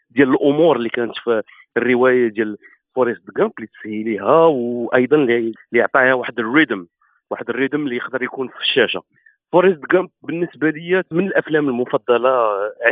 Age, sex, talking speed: 40-59, male, 140 wpm